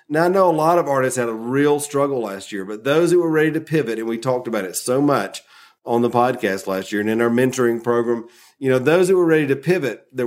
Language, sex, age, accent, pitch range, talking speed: English, male, 40-59, American, 120-145 Hz, 270 wpm